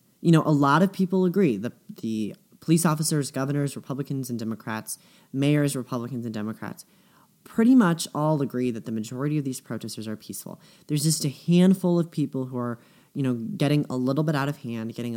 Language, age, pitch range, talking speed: English, 30-49, 120-155 Hz, 195 wpm